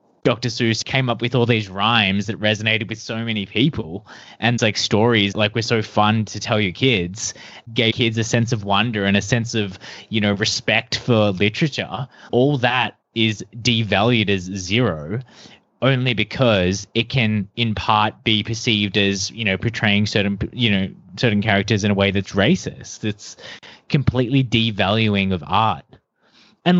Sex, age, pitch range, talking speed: male, 20-39, 105-125 Hz, 165 wpm